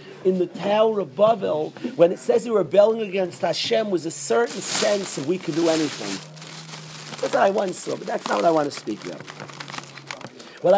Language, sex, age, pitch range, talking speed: English, male, 40-59, 160-210 Hz, 205 wpm